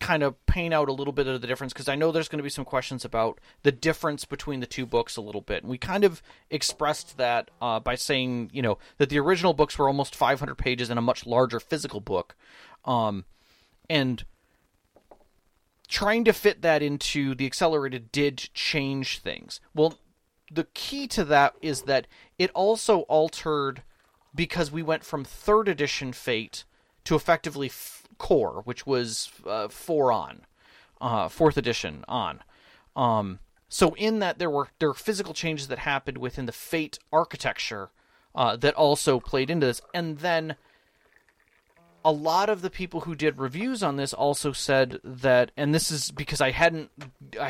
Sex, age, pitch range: male, 30-49, 125-160 Hz